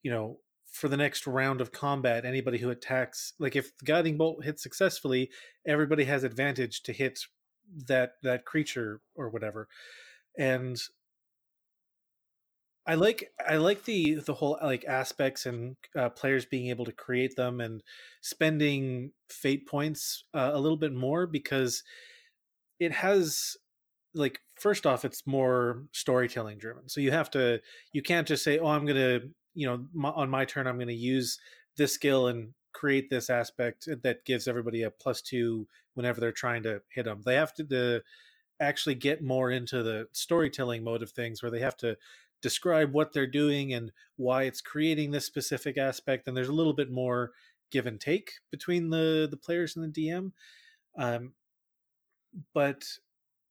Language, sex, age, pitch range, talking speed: English, male, 30-49, 125-155 Hz, 170 wpm